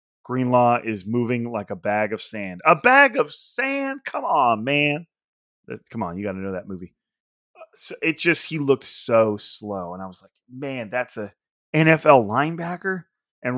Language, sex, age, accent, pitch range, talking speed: English, male, 30-49, American, 115-135 Hz, 185 wpm